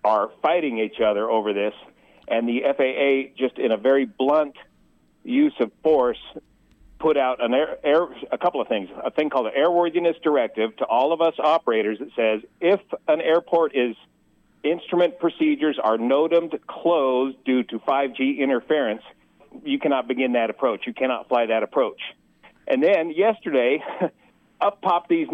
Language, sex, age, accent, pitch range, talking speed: English, male, 50-69, American, 130-175 Hz, 160 wpm